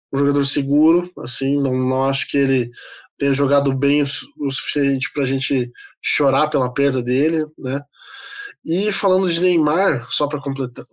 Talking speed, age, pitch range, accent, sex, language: 160 wpm, 20-39, 130-160 Hz, Brazilian, male, Portuguese